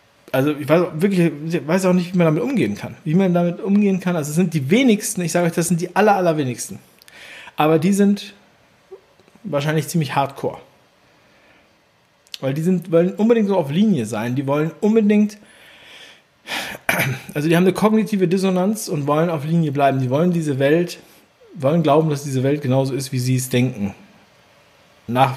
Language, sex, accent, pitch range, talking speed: German, male, German, 140-185 Hz, 180 wpm